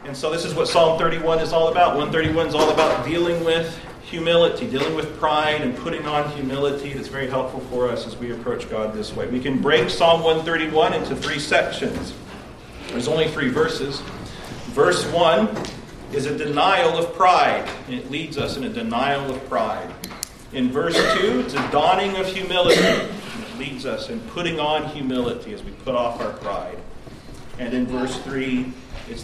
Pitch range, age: 125-160 Hz, 40-59